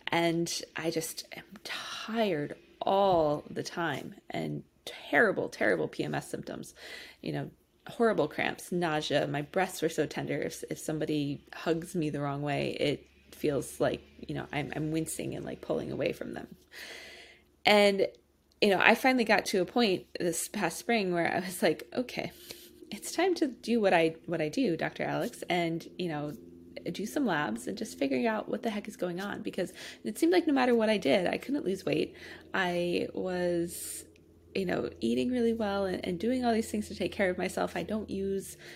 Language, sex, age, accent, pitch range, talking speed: English, female, 20-39, American, 160-210 Hz, 190 wpm